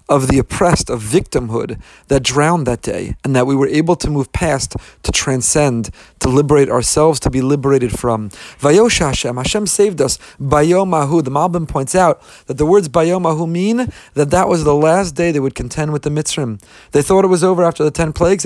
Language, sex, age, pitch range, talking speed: English, male, 40-59, 130-165 Hz, 200 wpm